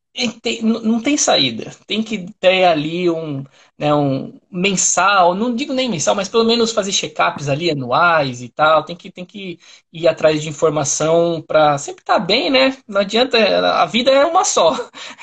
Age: 20-39